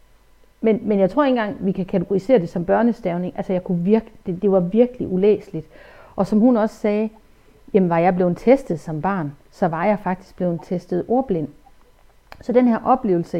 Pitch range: 180-240 Hz